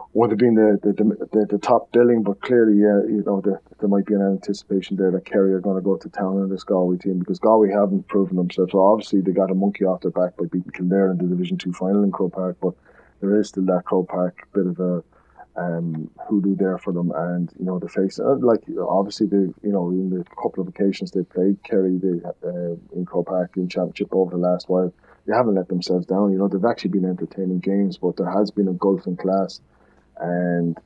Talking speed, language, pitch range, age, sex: 245 wpm, English, 90-100 Hz, 20-39, male